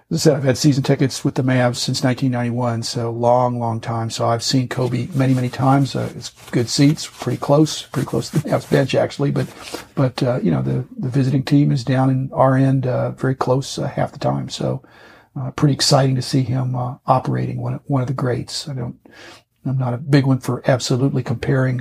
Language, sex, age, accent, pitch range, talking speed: English, male, 50-69, American, 120-140 Hz, 225 wpm